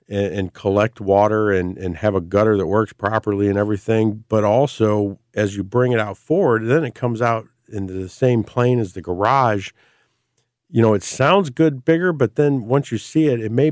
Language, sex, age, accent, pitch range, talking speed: English, male, 50-69, American, 95-120 Hz, 200 wpm